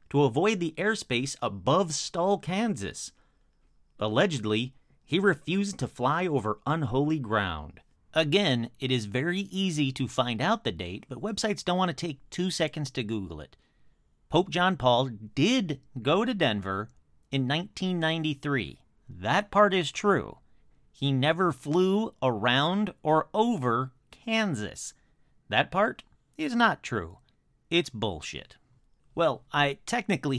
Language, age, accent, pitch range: English, 40-59, American, 120-190 Hz